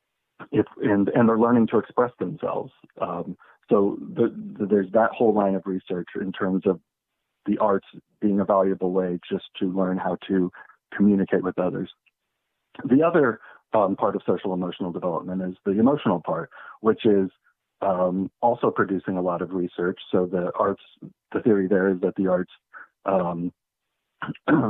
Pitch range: 95-110 Hz